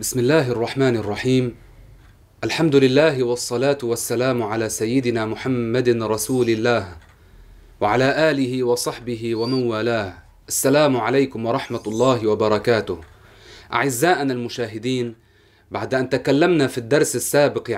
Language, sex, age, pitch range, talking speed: Arabic, male, 30-49, 115-160 Hz, 105 wpm